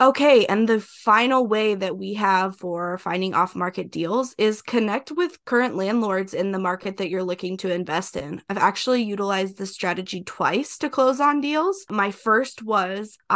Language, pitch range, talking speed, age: English, 185-220 Hz, 175 wpm, 20-39